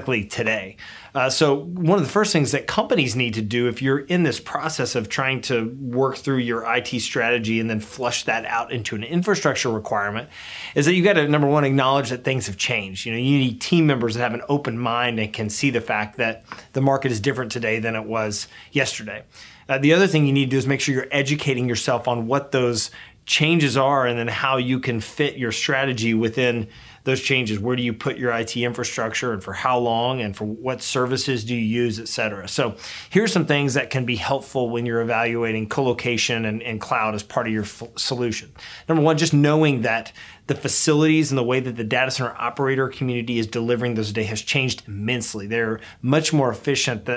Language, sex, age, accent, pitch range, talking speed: English, male, 30-49, American, 115-135 Hz, 215 wpm